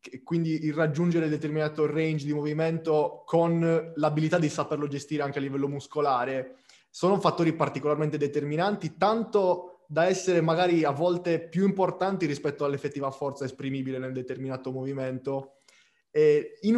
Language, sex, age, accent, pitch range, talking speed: Italian, male, 20-39, native, 145-175 Hz, 130 wpm